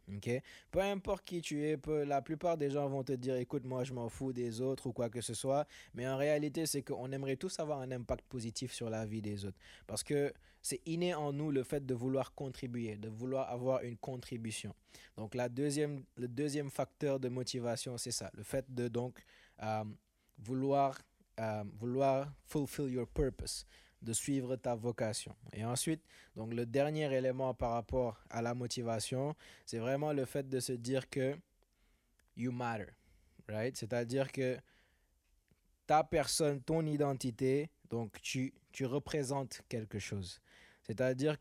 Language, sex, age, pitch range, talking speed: French, male, 20-39, 120-140 Hz, 175 wpm